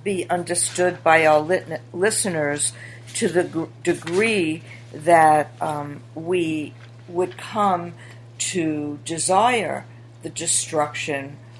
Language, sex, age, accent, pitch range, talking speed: English, female, 60-79, American, 120-190 Hz, 90 wpm